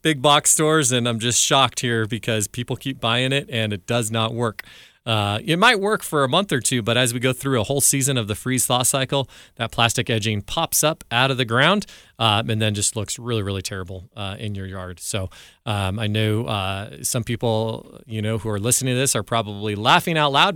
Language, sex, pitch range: English, male, 105-135 Hz